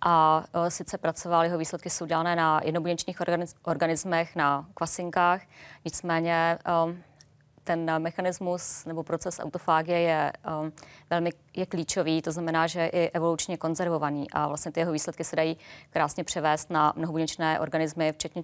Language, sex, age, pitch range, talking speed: Czech, female, 20-39, 155-170 Hz, 130 wpm